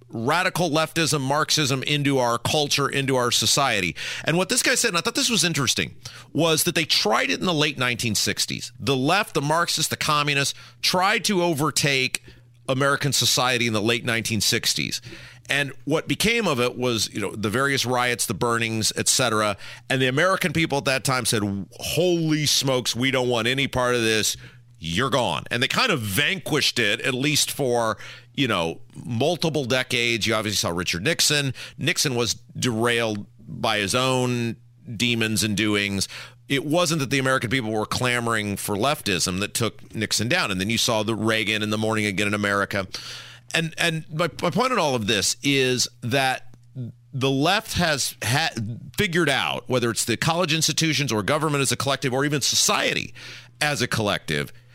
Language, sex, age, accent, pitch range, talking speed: English, male, 40-59, American, 115-150 Hz, 180 wpm